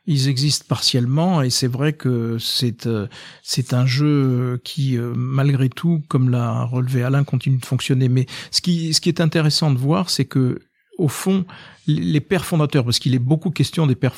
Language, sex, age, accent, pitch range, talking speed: French, male, 50-69, French, 125-150 Hz, 195 wpm